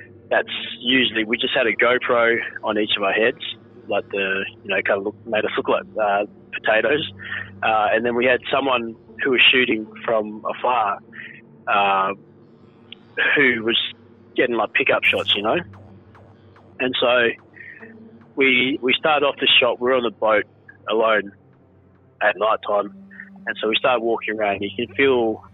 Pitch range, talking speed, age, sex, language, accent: 105-120 Hz, 165 wpm, 20-39, male, English, Australian